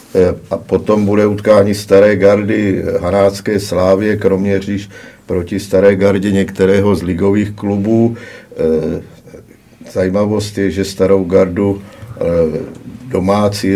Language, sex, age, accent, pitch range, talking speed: Czech, male, 50-69, native, 90-100 Hz, 95 wpm